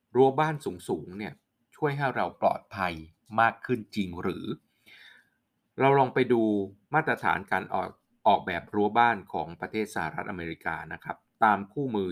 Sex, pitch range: male, 90-120 Hz